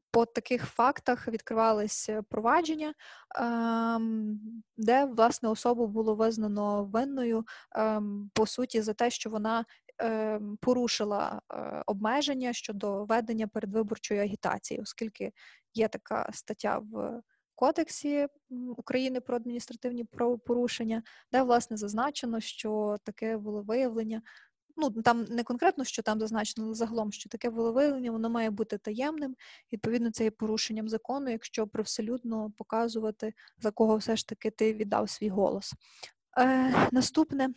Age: 20-39